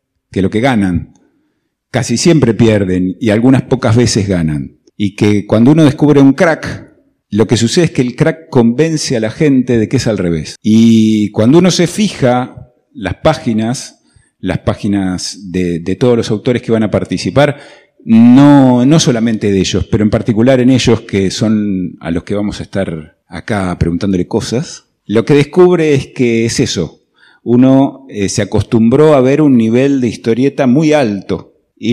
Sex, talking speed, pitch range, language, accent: male, 175 wpm, 100-130 Hz, Spanish, Argentinian